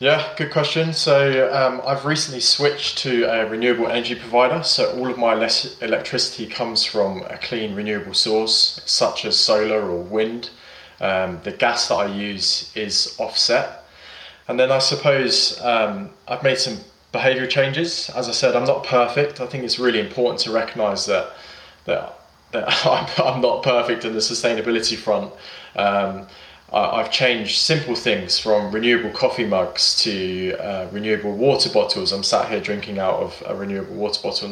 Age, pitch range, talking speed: 20-39, 105-130 Hz, 165 wpm